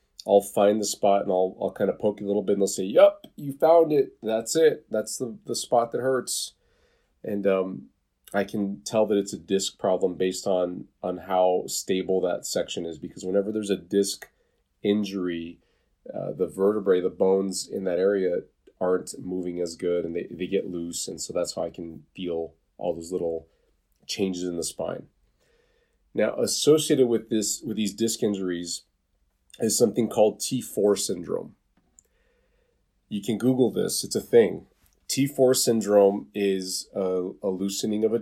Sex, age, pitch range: male, 30-49, 90-110 Hz